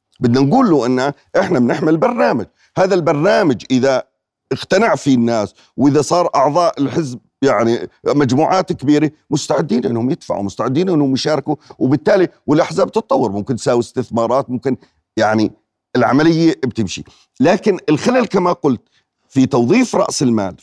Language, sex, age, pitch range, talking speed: Arabic, male, 40-59, 125-165 Hz, 130 wpm